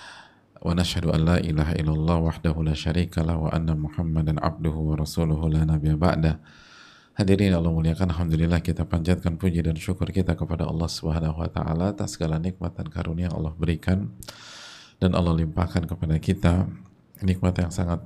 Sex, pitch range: male, 80-90 Hz